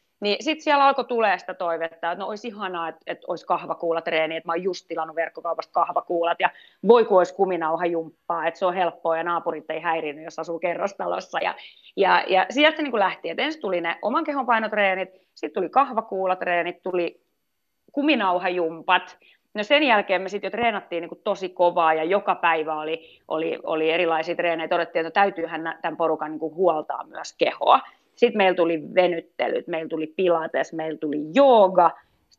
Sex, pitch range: female, 165-200 Hz